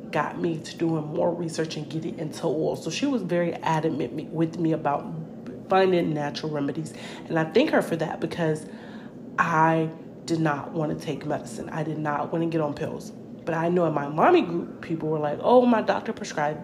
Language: English